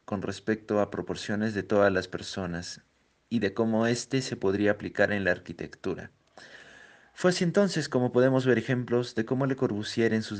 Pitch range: 95-120 Hz